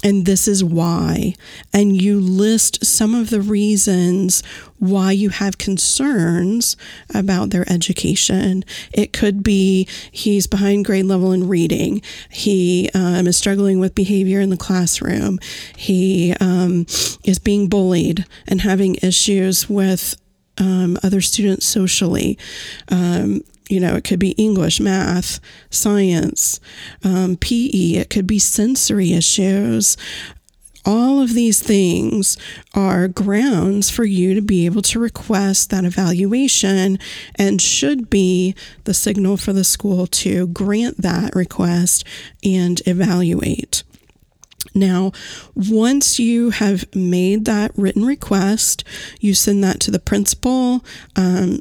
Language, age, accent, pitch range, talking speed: English, 40-59, American, 185-210 Hz, 130 wpm